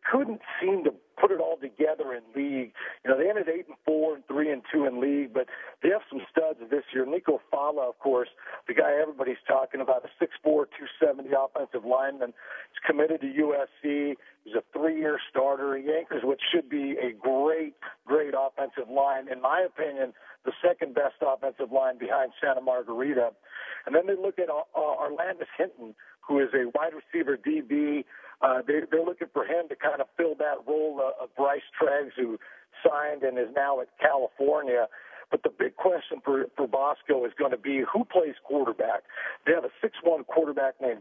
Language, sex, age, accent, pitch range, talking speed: English, male, 50-69, American, 130-165 Hz, 195 wpm